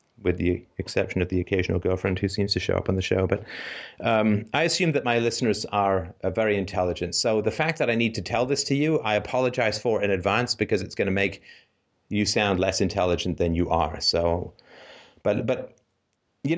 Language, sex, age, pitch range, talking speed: English, male, 30-49, 110-165 Hz, 205 wpm